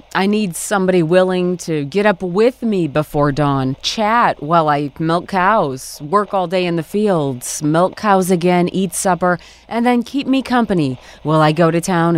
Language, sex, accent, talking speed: English, female, American, 180 wpm